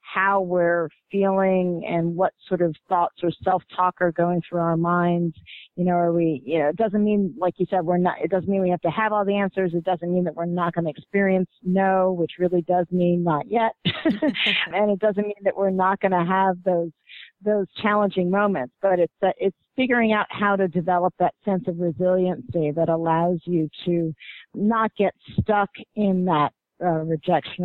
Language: English